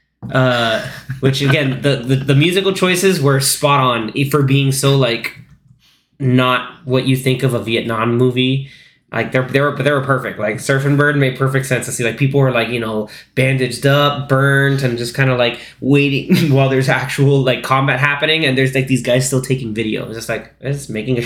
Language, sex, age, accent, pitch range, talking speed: English, male, 20-39, American, 120-140 Hz, 200 wpm